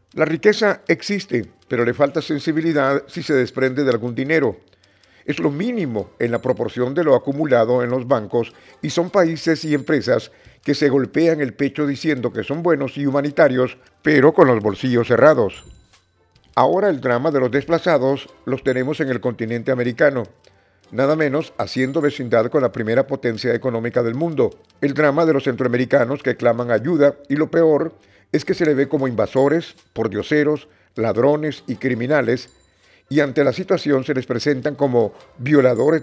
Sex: male